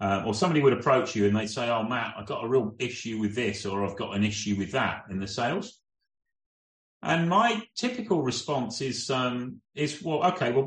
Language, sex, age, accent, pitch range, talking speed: English, male, 30-49, British, 115-170 Hz, 215 wpm